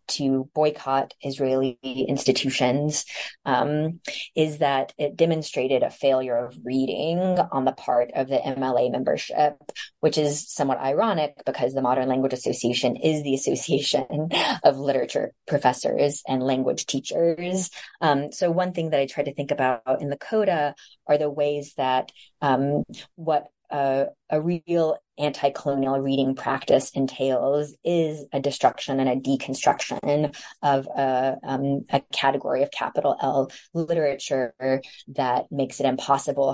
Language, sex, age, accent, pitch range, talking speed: English, female, 30-49, American, 130-150 Hz, 135 wpm